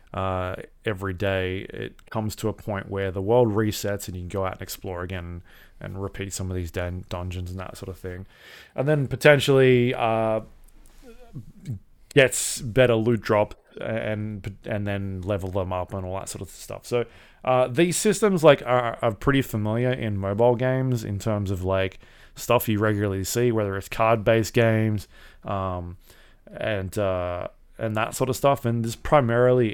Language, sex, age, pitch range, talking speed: English, male, 20-39, 95-120 Hz, 175 wpm